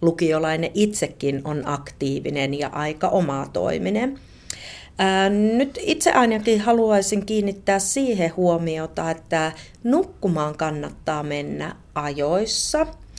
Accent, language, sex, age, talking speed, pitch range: native, Finnish, female, 30-49, 85 wpm, 160-230 Hz